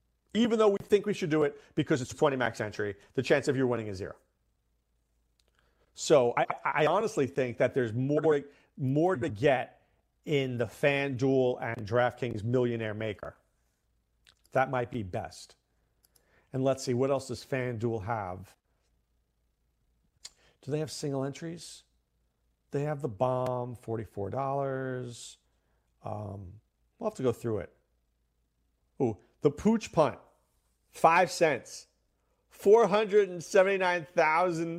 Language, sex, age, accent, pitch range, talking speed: English, male, 50-69, American, 90-150 Hz, 125 wpm